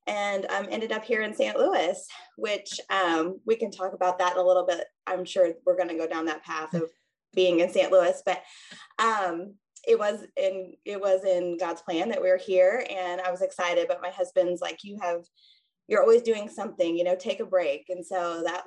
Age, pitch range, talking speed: 20-39, 175-220 Hz, 220 wpm